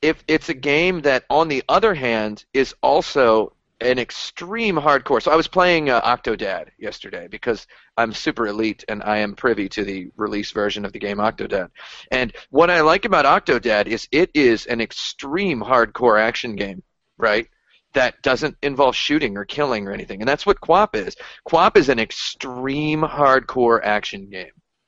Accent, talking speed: American, 175 wpm